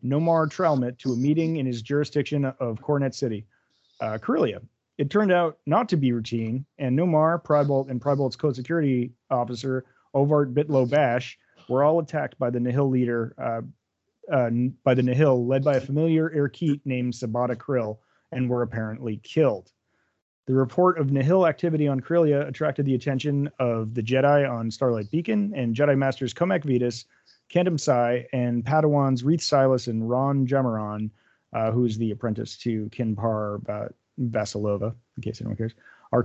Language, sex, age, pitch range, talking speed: English, male, 30-49, 120-150 Hz, 155 wpm